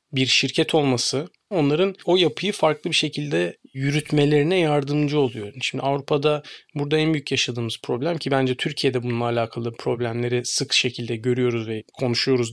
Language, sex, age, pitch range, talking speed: Turkish, male, 40-59, 125-150 Hz, 145 wpm